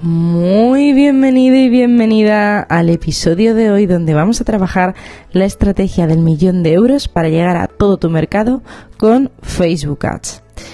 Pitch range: 170-215 Hz